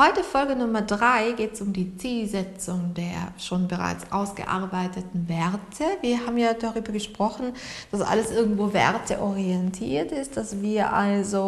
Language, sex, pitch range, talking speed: German, female, 200-230 Hz, 140 wpm